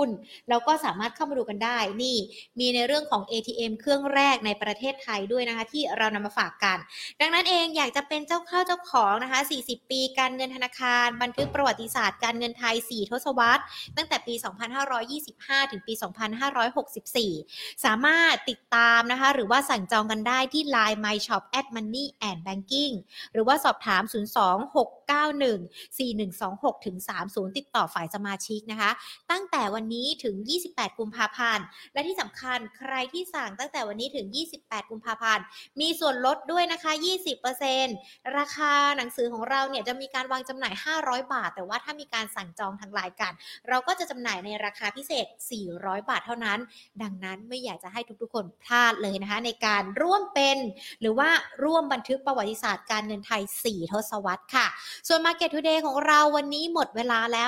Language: Thai